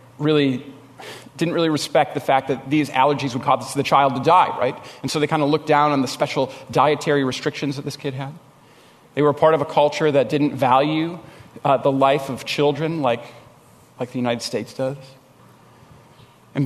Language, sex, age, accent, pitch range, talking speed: English, male, 40-59, American, 130-150 Hz, 190 wpm